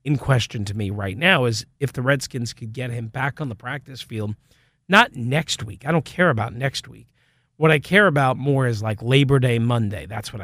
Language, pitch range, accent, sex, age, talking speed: English, 120-145 Hz, American, male, 40-59, 225 wpm